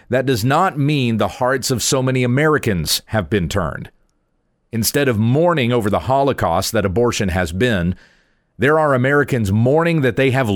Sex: male